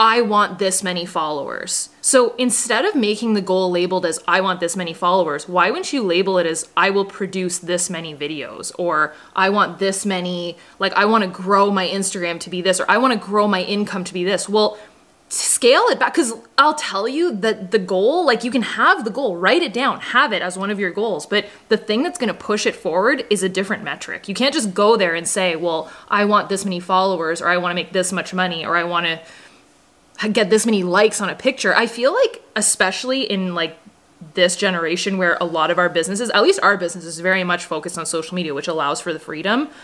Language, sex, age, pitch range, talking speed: English, female, 20-39, 175-215 Hz, 235 wpm